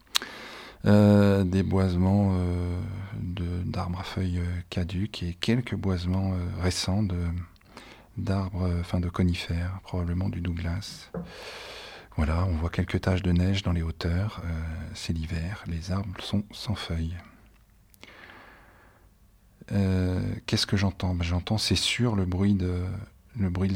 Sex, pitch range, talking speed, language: male, 90-100 Hz, 130 wpm, French